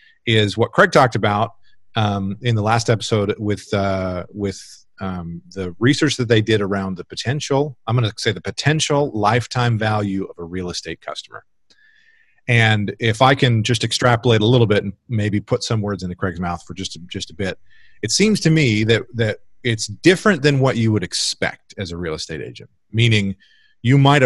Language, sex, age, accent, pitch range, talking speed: English, male, 40-59, American, 100-125 Hz, 195 wpm